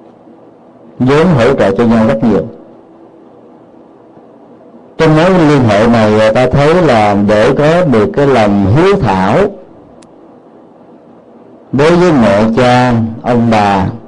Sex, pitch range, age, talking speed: male, 105-135 Hz, 50-69, 125 wpm